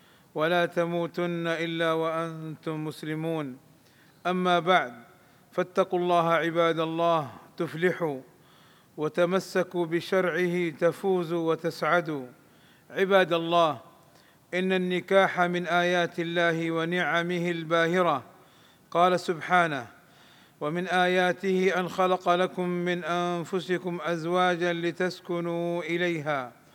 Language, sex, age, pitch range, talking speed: Arabic, male, 40-59, 165-180 Hz, 85 wpm